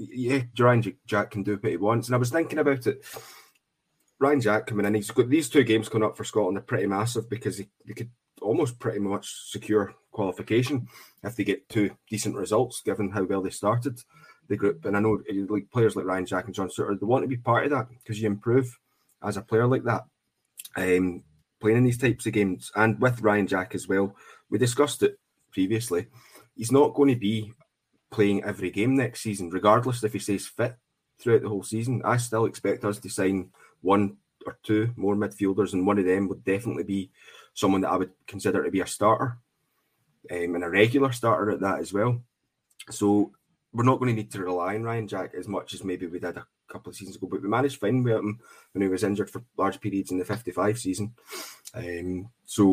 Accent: British